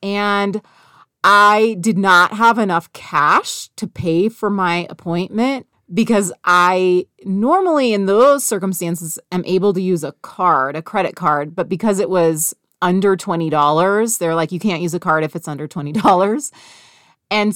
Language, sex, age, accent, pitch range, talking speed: English, female, 30-49, American, 170-225 Hz, 155 wpm